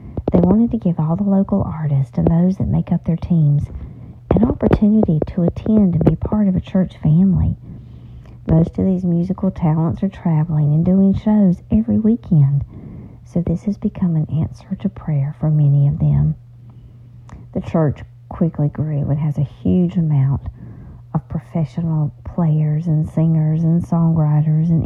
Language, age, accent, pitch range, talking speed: English, 50-69, American, 120-170 Hz, 160 wpm